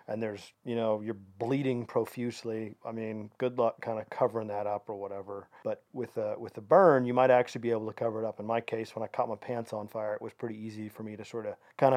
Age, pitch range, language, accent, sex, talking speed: 40-59, 110-125 Hz, English, American, male, 265 wpm